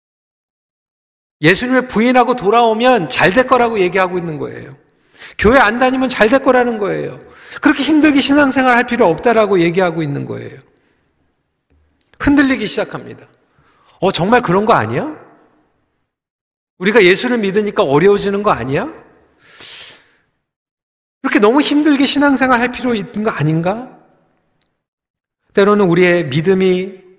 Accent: native